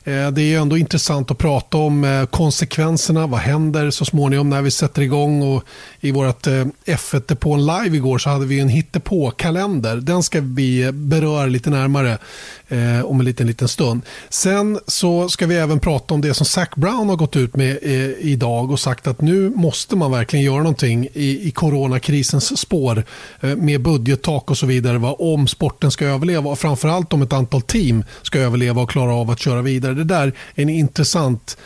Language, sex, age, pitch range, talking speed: Swedish, male, 30-49, 130-155 Hz, 180 wpm